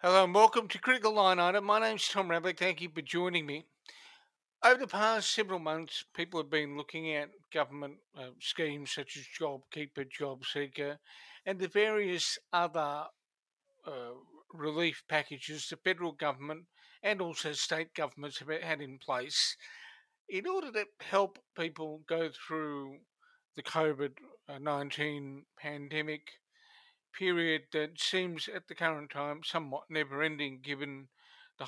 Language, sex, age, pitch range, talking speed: English, male, 50-69, 145-190 Hz, 135 wpm